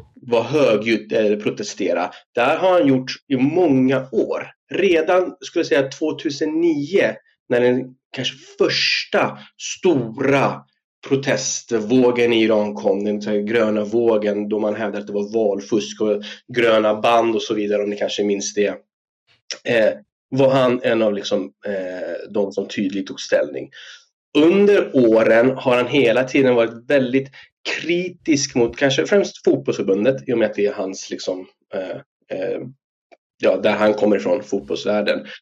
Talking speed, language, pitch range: 145 wpm, Swedish, 105-145 Hz